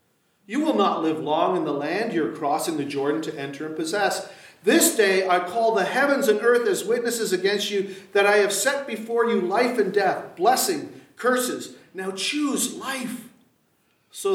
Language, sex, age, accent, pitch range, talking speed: English, male, 50-69, American, 175-250 Hz, 180 wpm